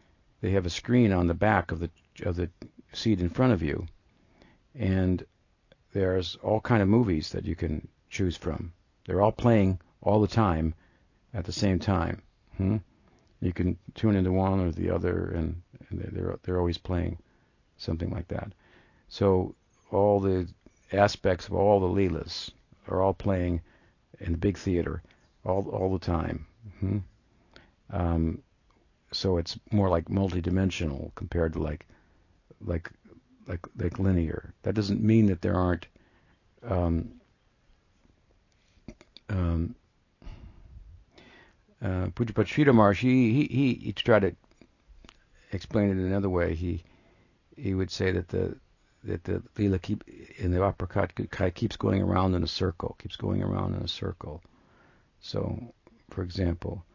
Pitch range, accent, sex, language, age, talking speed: 85-105 Hz, American, male, English, 50-69, 145 wpm